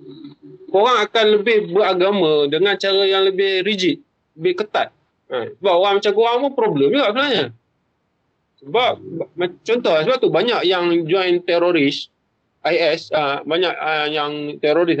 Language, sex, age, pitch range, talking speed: Malay, male, 20-39, 145-245 Hz, 140 wpm